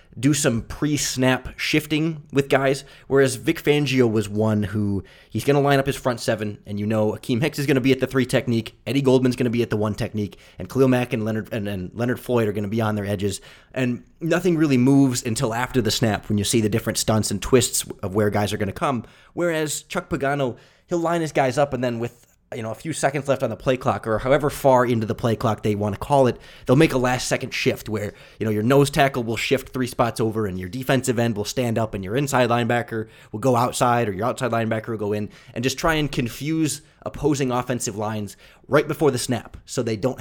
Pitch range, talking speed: 110-135 Hz, 245 wpm